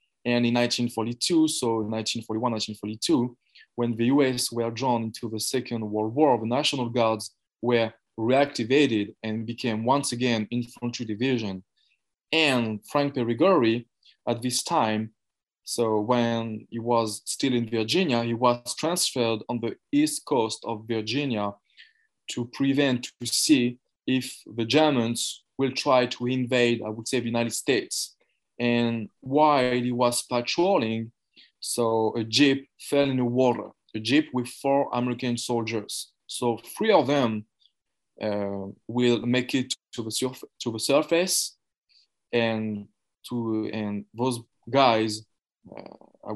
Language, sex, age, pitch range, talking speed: English, male, 20-39, 110-125 Hz, 135 wpm